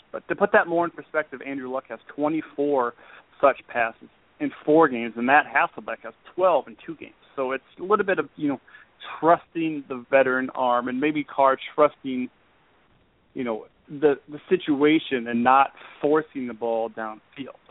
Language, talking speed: English, 175 wpm